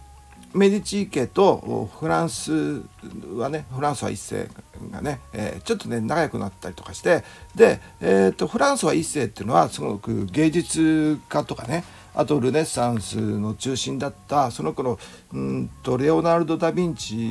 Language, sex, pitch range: Japanese, male, 95-150 Hz